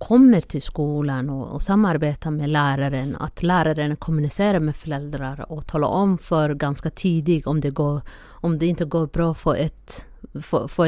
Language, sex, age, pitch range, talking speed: Swedish, female, 30-49, 145-180 Hz, 170 wpm